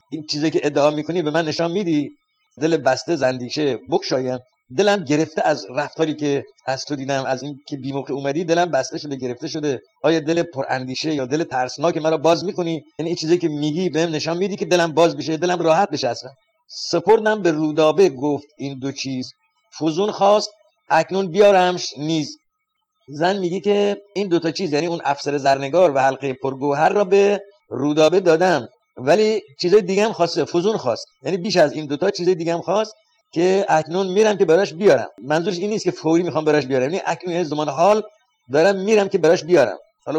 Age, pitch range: 50-69, 145-200 Hz